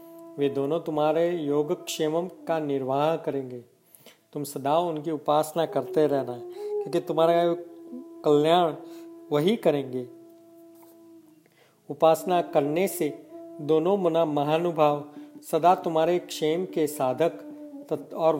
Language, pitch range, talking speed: Hindi, 145-185 Hz, 100 wpm